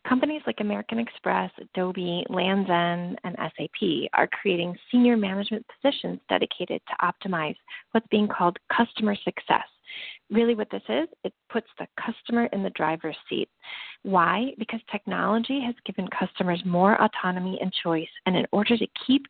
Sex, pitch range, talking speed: female, 185-235 Hz, 150 wpm